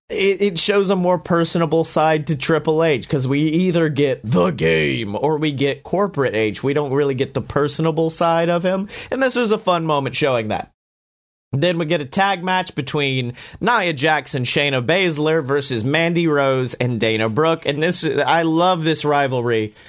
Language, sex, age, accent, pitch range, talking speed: English, male, 30-49, American, 135-180 Hz, 185 wpm